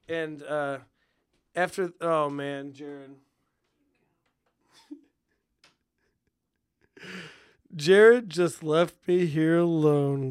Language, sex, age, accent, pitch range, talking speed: English, male, 30-49, American, 140-175 Hz, 70 wpm